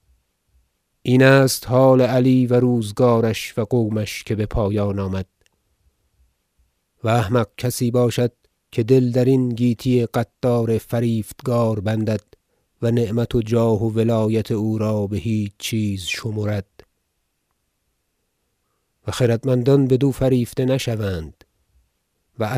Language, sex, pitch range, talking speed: Persian, male, 100-125 Hz, 115 wpm